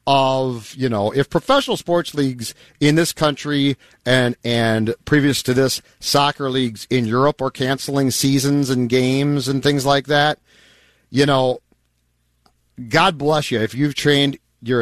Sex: male